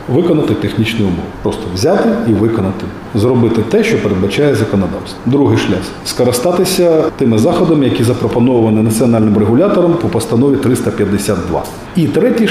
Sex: male